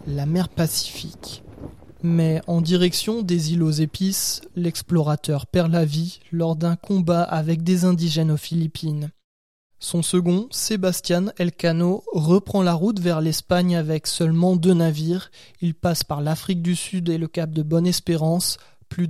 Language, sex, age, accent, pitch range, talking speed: French, male, 20-39, French, 155-180 Hz, 150 wpm